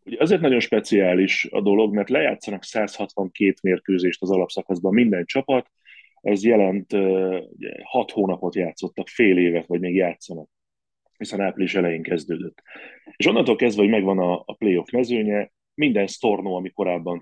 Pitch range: 90-105 Hz